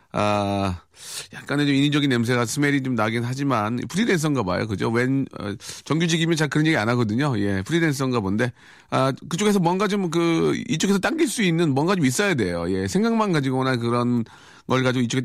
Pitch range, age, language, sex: 110-155 Hz, 40-59, Korean, male